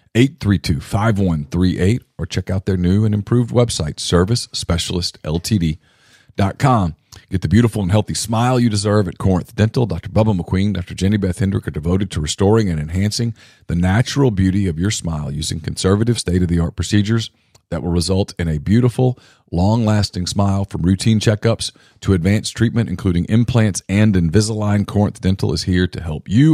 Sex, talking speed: male, 160 wpm